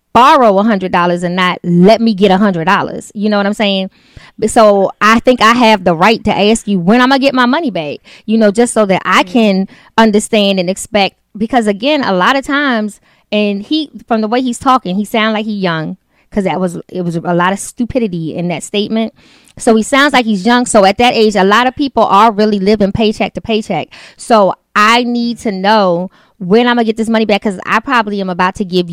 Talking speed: 235 wpm